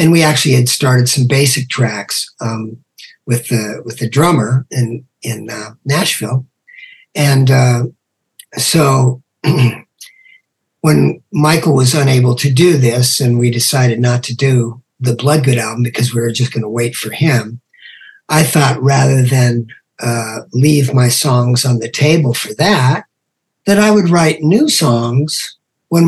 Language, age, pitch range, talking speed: English, 50-69, 120-150 Hz, 150 wpm